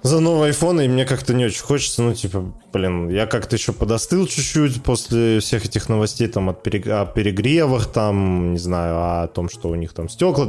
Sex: male